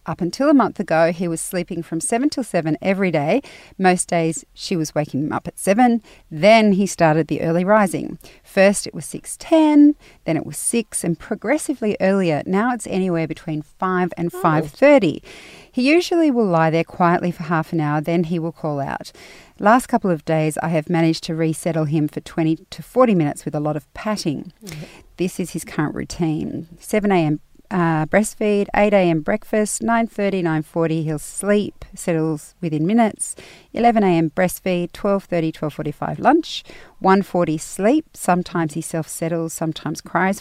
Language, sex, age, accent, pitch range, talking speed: English, female, 40-59, Australian, 160-205 Hz, 170 wpm